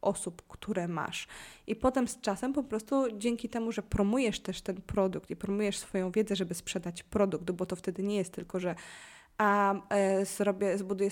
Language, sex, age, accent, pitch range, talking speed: Polish, female, 20-39, native, 185-210 Hz, 175 wpm